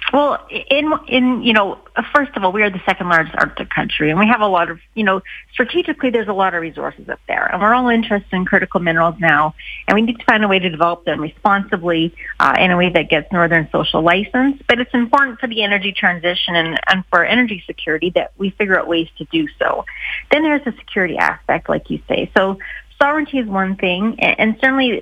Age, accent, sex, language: 30-49, American, female, English